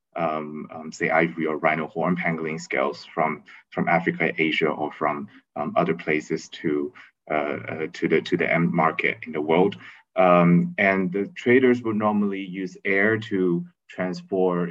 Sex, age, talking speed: male, 30-49, 165 wpm